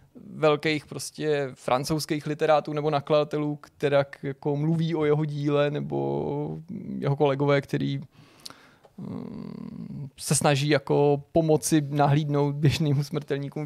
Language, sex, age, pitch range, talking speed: Czech, male, 20-39, 140-155 Hz, 100 wpm